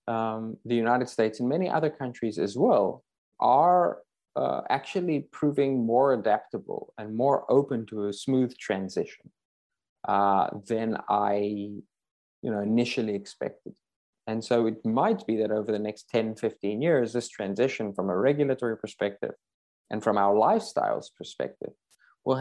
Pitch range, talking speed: 100-120 Hz, 145 wpm